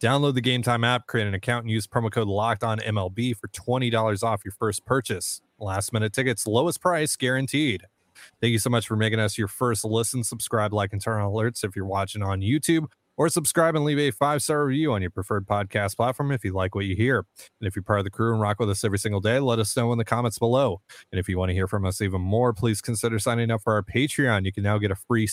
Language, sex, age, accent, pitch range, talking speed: English, male, 30-49, American, 95-120 Hz, 250 wpm